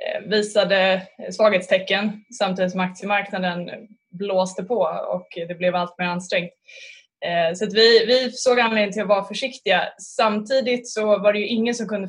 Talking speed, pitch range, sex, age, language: 150 wpm, 185-220 Hz, female, 20-39, Swedish